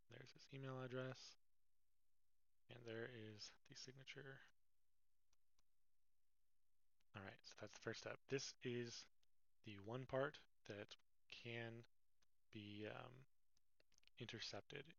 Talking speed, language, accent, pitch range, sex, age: 105 wpm, English, American, 100-120 Hz, male, 20-39